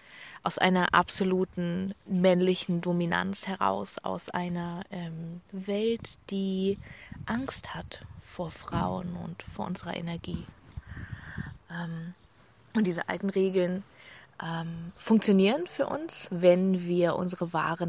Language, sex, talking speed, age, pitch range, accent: German, female, 105 wpm, 30-49, 170-195 Hz, German